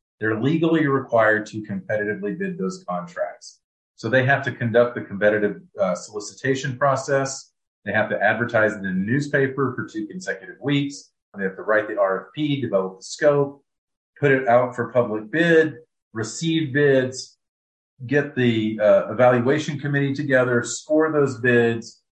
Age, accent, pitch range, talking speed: 40-59, American, 105-140 Hz, 150 wpm